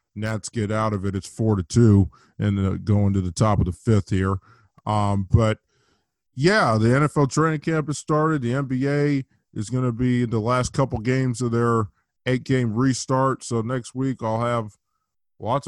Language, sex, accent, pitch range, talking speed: English, male, American, 105-125 Hz, 190 wpm